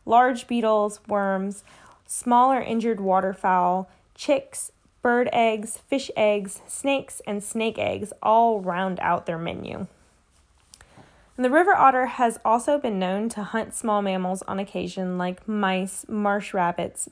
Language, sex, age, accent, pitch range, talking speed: English, female, 10-29, American, 185-235 Hz, 135 wpm